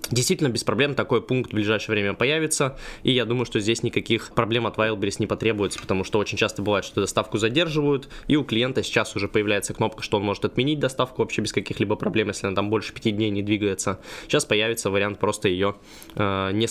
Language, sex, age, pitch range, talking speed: Russian, male, 20-39, 105-125 Hz, 210 wpm